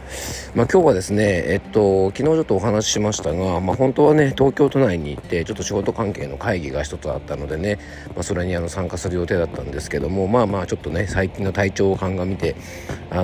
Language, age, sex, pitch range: Japanese, 40-59, male, 85-110 Hz